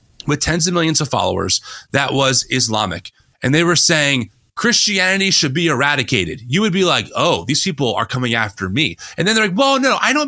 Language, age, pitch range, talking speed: English, 30-49, 130-185 Hz, 210 wpm